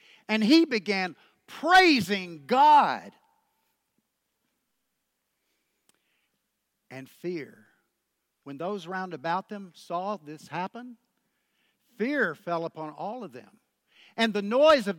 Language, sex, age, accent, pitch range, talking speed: English, male, 50-69, American, 175-245 Hz, 100 wpm